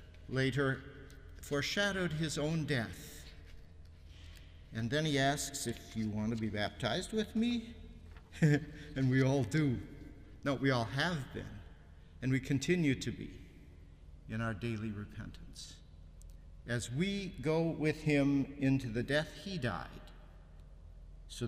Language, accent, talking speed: English, American, 130 wpm